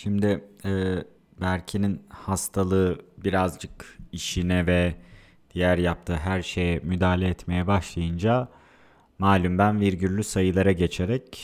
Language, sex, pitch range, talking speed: Turkish, male, 90-105 Hz, 100 wpm